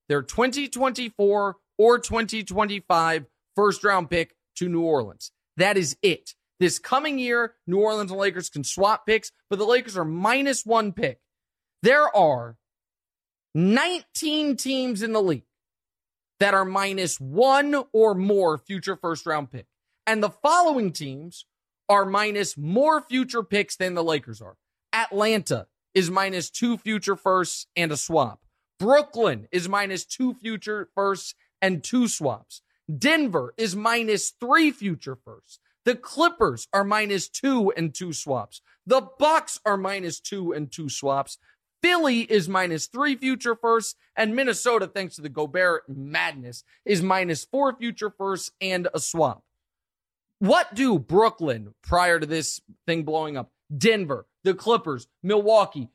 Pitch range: 165-230 Hz